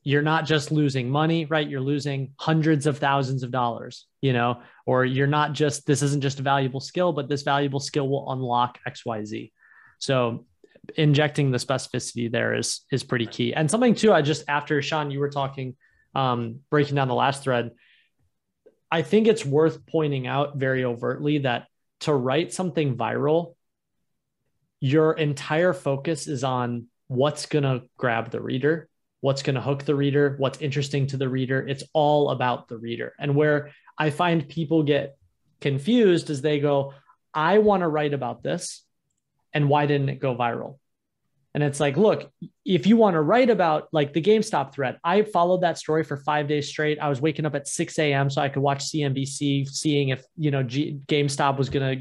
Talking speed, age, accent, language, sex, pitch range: 185 wpm, 20-39, American, English, male, 135-155 Hz